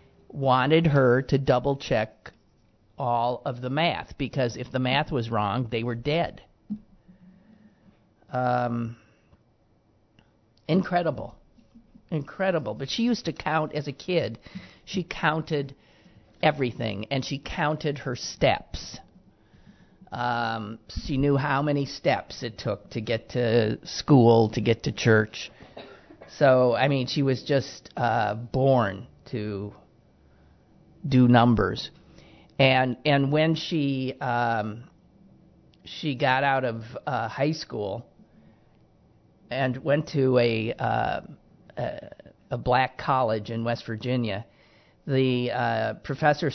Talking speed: 115 wpm